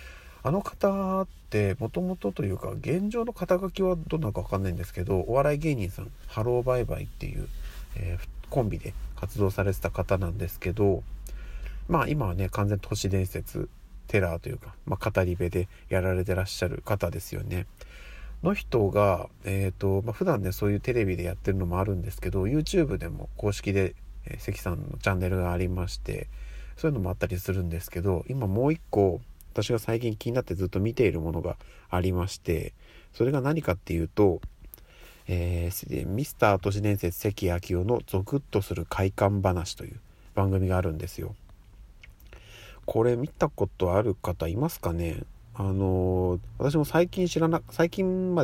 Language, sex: Japanese, male